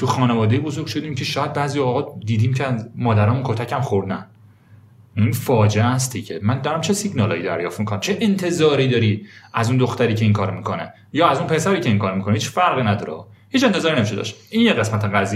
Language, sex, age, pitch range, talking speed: Persian, male, 30-49, 110-160 Hz, 205 wpm